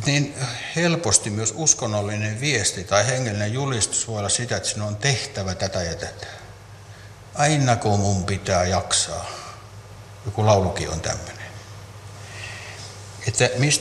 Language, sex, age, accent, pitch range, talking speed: Finnish, male, 60-79, native, 100-125 Hz, 115 wpm